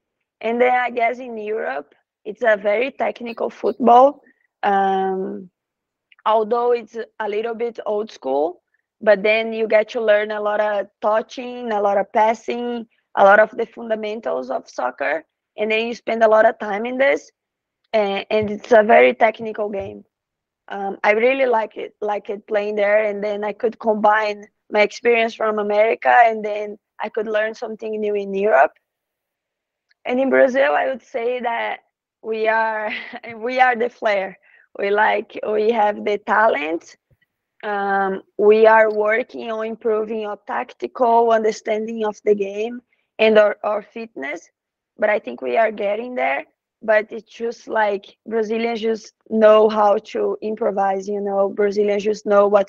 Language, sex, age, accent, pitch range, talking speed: English, female, 20-39, Brazilian, 210-230 Hz, 160 wpm